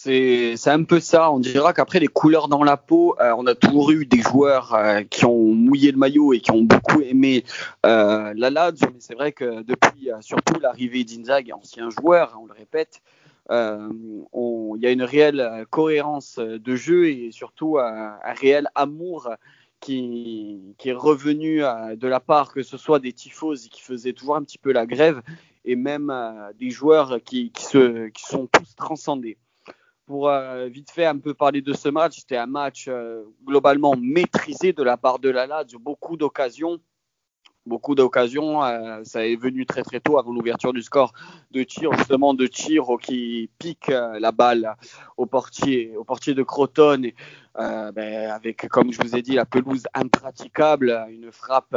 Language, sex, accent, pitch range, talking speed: French, male, French, 120-145 Hz, 190 wpm